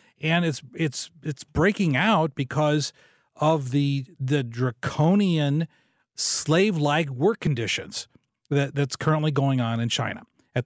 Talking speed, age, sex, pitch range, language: 125 wpm, 40-59, male, 125-165 Hz, English